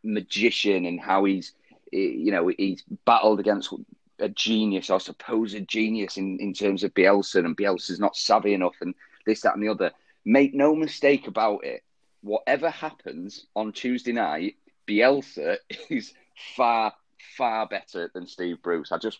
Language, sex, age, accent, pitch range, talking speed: English, male, 30-49, British, 95-135 Hz, 155 wpm